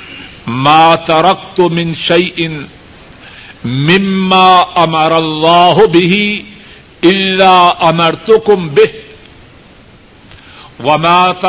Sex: male